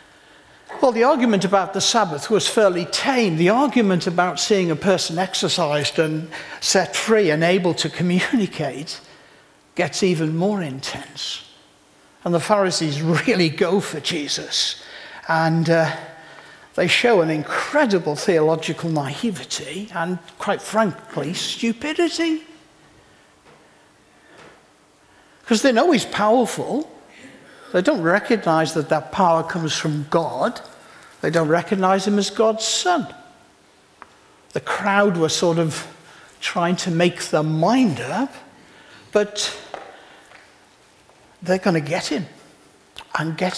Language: English